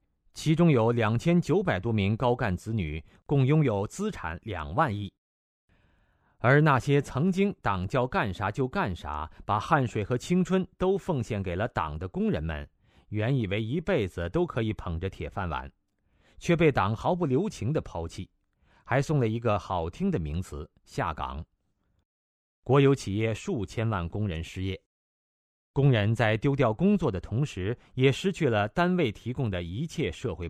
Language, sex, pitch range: Chinese, male, 90-140 Hz